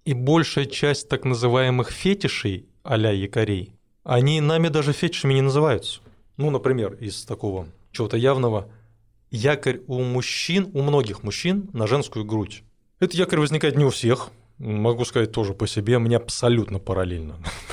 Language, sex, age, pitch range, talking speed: Russian, male, 20-39, 110-135 Hz, 145 wpm